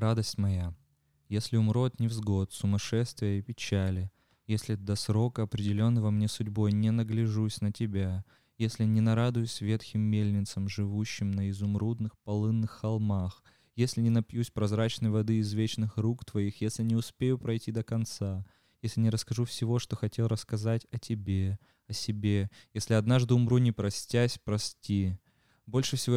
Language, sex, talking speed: Russian, male, 140 wpm